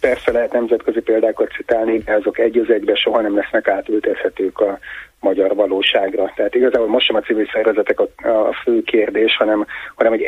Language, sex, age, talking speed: Hungarian, male, 30-49, 175 wpm